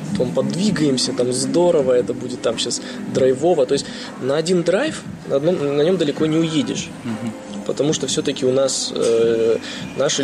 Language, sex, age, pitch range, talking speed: Russian, male, 20-39, 130-165 Hz, 165 wpm